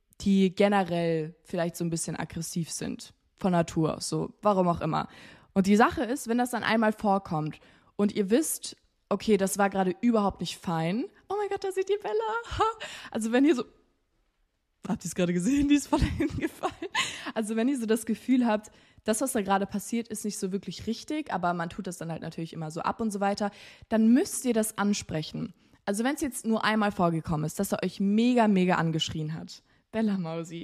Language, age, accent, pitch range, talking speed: German, 20-39, German, 180-230 Hz, 210 wpm